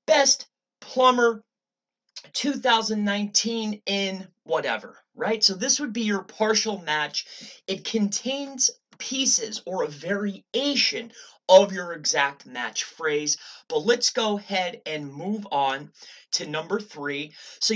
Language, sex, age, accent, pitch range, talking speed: English, male, 30-49, American, 170-230 Hz, 120 wpm